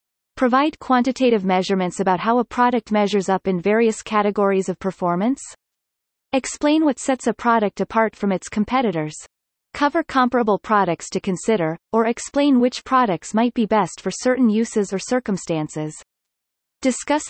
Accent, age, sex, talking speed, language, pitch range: American, 30-49, female, 140 wpm, English, 185-245 Hz